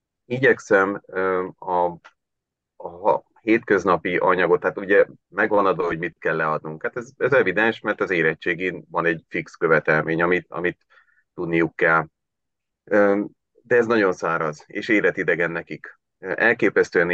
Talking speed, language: 135 wpm, Hungarian